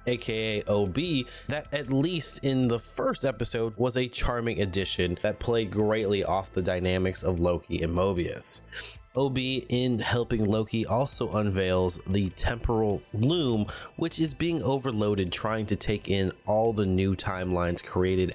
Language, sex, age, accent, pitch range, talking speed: English, male, 20-39, American, 95-120 Hz, 145 wpm